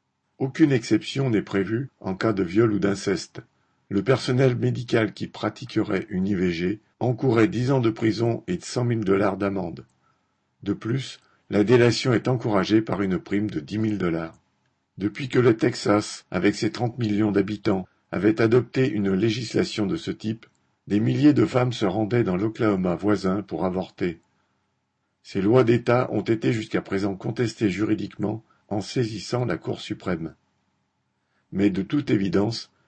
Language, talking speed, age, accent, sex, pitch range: French, 155 wpm, 50-69, French, male, 100-125 Hz